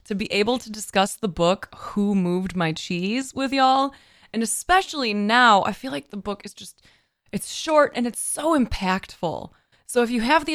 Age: 20-39